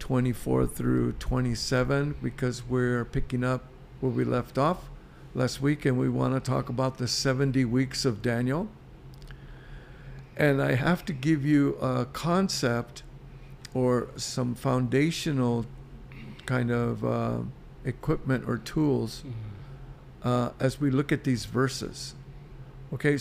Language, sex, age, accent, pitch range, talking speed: English, male, 60-79, American, 125-140 Hz, 125 wpm